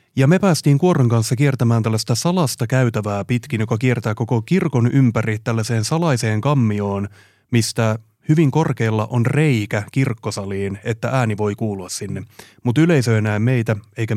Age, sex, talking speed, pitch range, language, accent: 30-49, male, 150 wpm, 105-130 Hz, Finnish, native